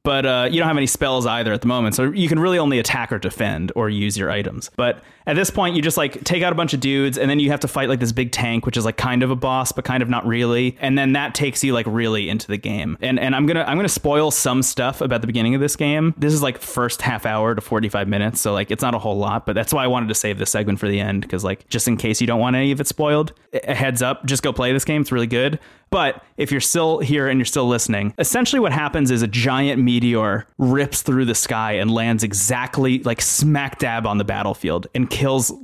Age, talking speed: 20-39, 280 wpm